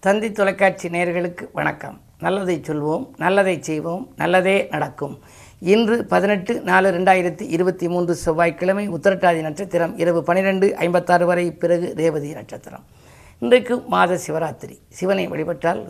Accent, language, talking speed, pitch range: native, Tamil, 115 wpm, 165-205 Hz